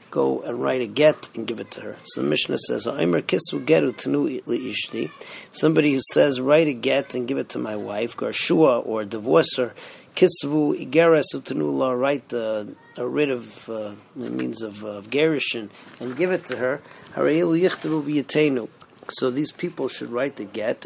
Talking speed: 145 wpm